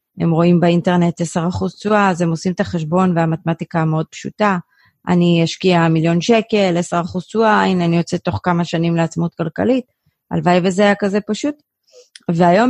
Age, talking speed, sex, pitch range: 30-49, 155 wpm, female, 160-190 Hz